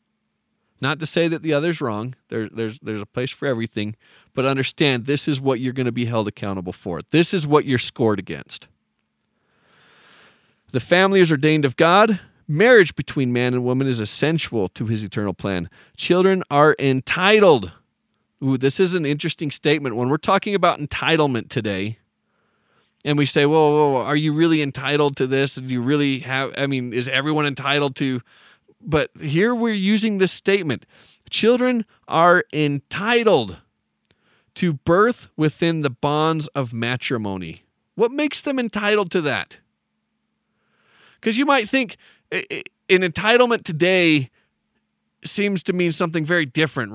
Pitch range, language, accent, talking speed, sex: 120-170 Hz, English, American, 150 wpm, male